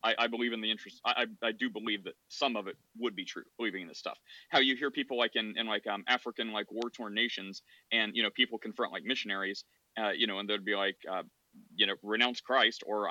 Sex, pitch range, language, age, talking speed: male, 110-130 Hz, English, 30-49, 245 wpm